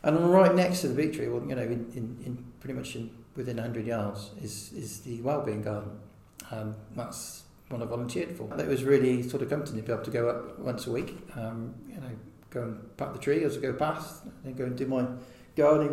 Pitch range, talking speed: 115-130 Hz, 245 wpm